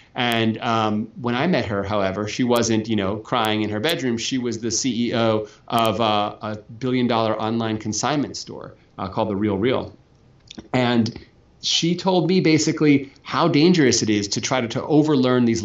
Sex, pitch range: male, 105-130 Hz